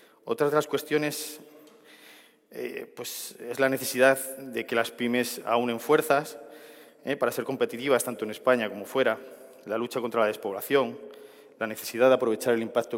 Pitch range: 115-140 Hz